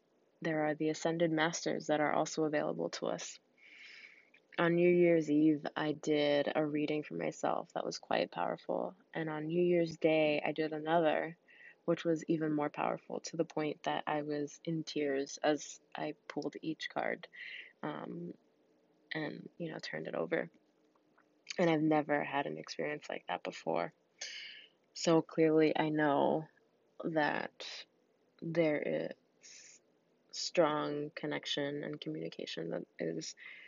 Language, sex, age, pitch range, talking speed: English, female, 20-39, 150-165 Hz, 145 wpm